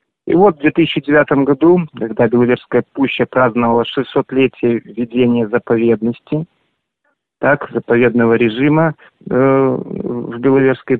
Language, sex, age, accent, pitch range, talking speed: Russian, male, 40-59, native, 120-145 Hz, 100 wpm